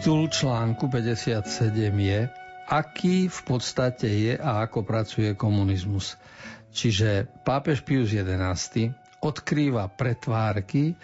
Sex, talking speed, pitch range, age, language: male, 100 wpm, 105-125 Hz, 50-69, Slovak